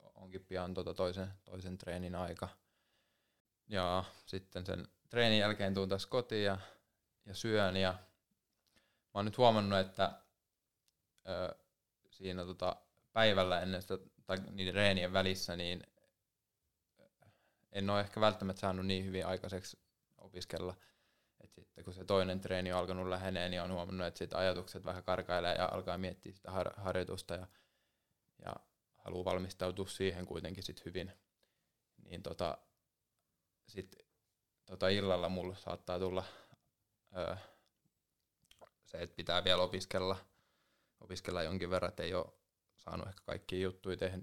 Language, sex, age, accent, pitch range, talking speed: Finnish, male, 20-39, native, 90-95 Hz, 130 wpm